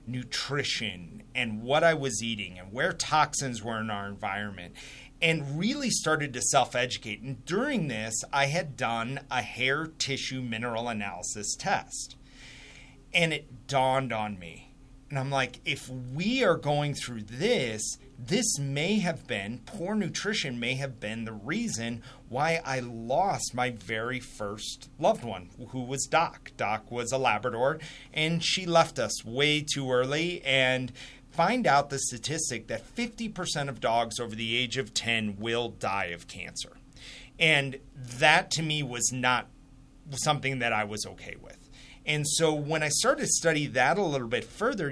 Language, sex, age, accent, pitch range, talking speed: English, male, 30-49, American, 120-150 Hz, 160 wpm